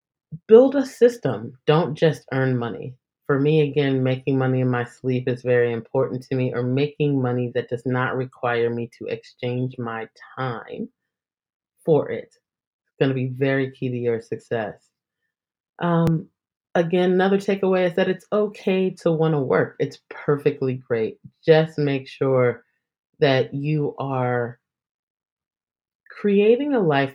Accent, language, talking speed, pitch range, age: American, English, 150 wpm, 125-165 Hz, 30-49